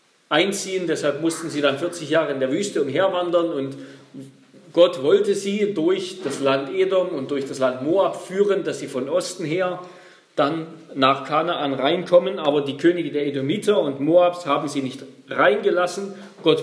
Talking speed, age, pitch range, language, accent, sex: 165 wpm, 40-59, 140-185 Hz, German, German, male